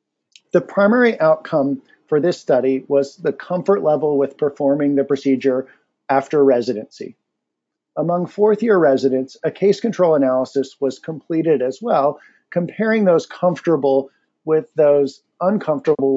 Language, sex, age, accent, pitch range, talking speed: English, male, 50-69, American, 140-175 Hz, 125 wpm